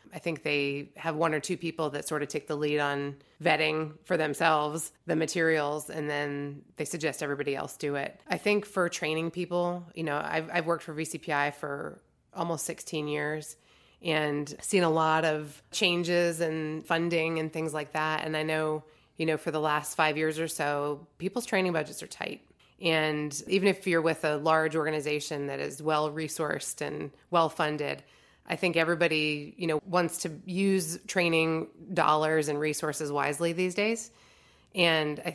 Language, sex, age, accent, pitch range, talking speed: English, female, 20-39, American, 150-165 Hz, 175 wpm